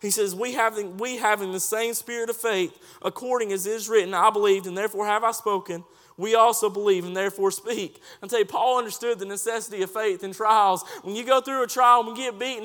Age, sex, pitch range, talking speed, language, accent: 20-39, male, 205-255 Hz, 235 wpm, English, American